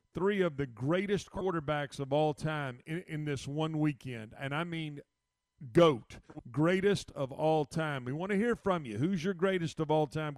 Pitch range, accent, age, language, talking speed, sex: 145-165 Hz, American, 40-59, English, 190 wpm, male